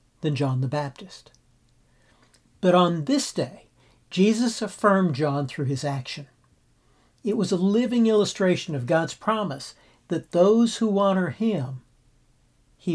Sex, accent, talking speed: male, American, 130 wpm